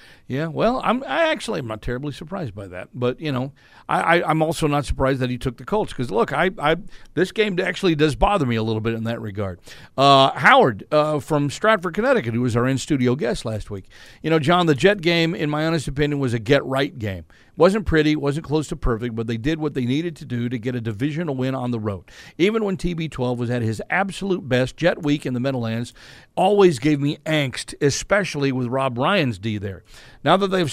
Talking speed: 230 wpm